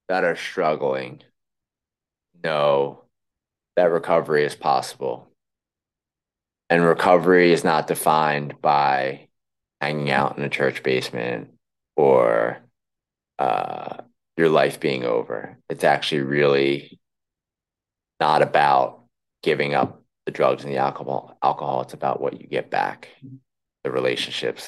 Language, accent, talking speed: English, American, 115 wpm